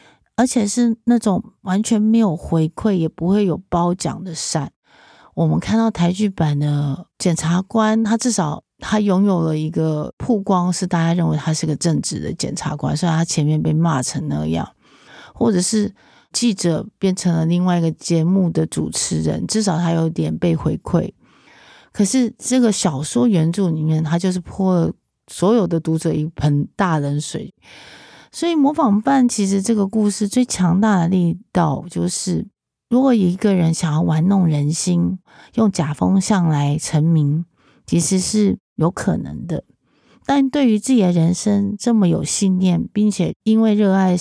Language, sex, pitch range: Chinese, female, 160-210 Hz